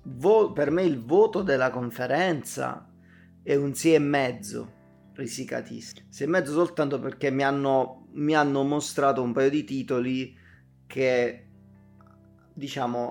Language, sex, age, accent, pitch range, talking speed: Italian, male, 30-49, native, 110-130 Hz, 125 wpm